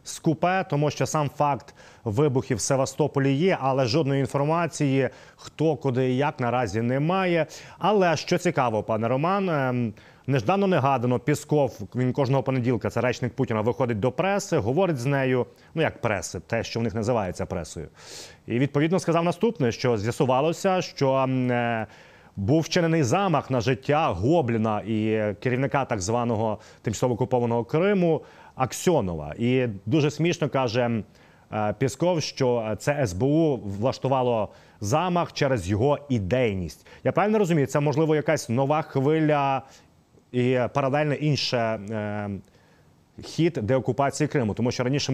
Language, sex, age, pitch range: Ukrainian, male, 30-49, 115-150 Hz